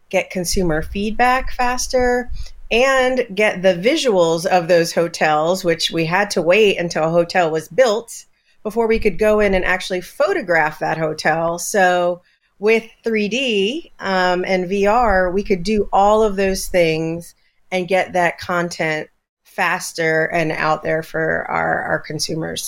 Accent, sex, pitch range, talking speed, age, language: American, female, 170-215 Hz, 150 wpm, 40-59, English